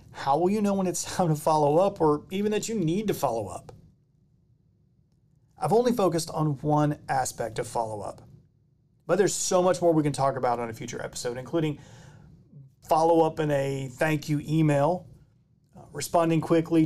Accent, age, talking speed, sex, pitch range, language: American, 40-59, 180 wpm, male, 135-160 Hz, English